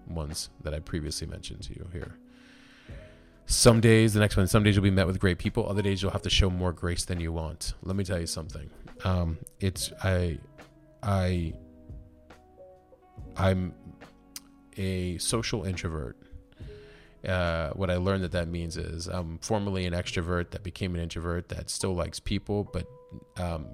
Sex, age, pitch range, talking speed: male, 30-49, 85-100 Hz, 170 wpm